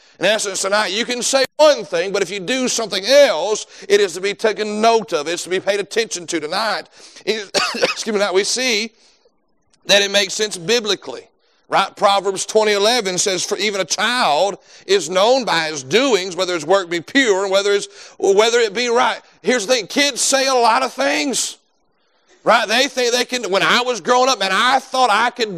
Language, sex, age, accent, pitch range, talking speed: English, male, 40-59, American, 200-265 Hz, 200 wpm